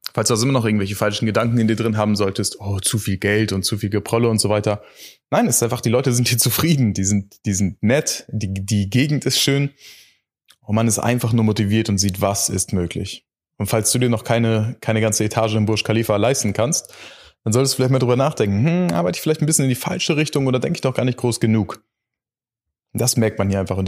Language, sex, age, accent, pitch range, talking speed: German, male, 20-39, German, 100-120 Hz, 250 wpm